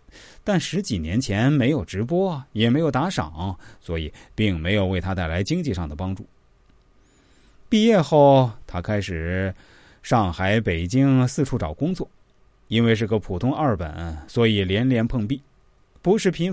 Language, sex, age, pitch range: Chinese, male, 20-39, 95-135 Hz